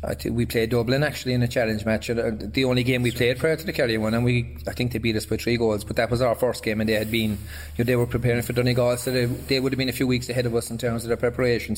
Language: English